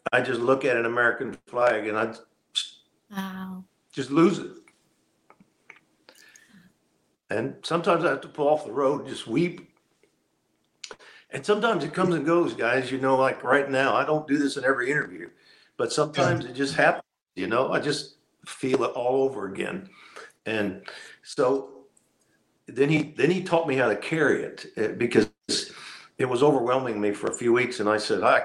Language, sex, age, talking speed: English, male, 50-69, 175 wpm